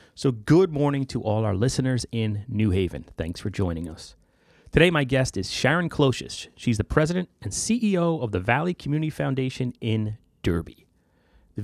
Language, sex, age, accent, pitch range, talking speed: English, male, 30-49, American, 110-155 Hz, 170 wpm